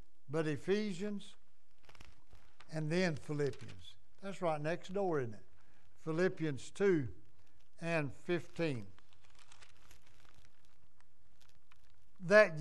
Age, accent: 60-79, American